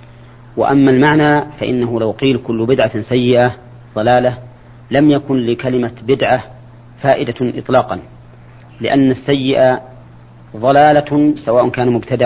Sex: male